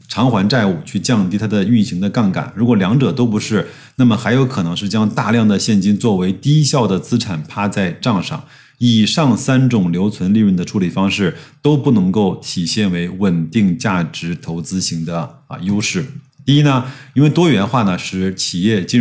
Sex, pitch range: male, 100-135 Hz